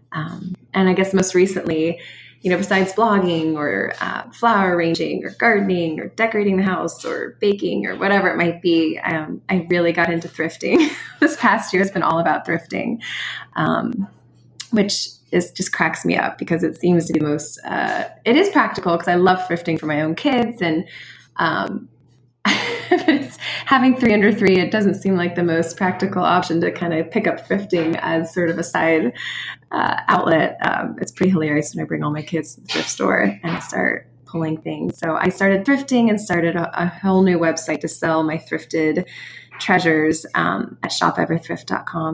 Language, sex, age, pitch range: English, female, 20-39, 160-190 Hz